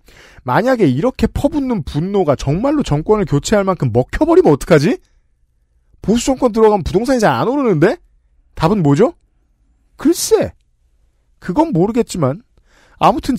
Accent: native